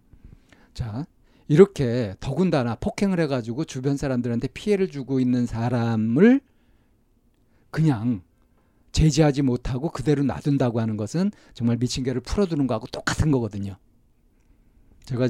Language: Korean